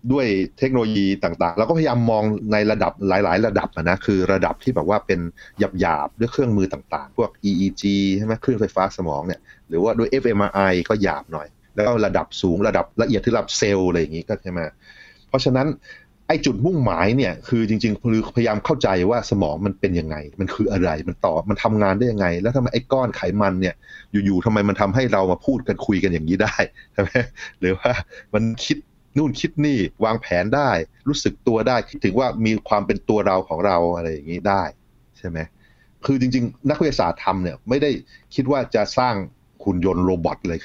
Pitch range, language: 95-115 Hz, Thai